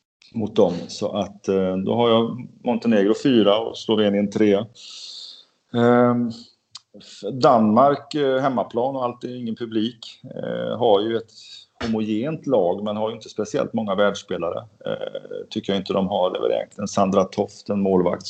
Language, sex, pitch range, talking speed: Swedish, male, 95-115 Hz, 130 wpm